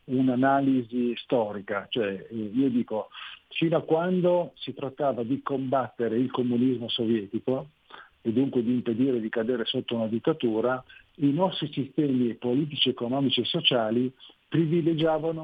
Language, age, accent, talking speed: Italian, 50-69, native, 125 wpm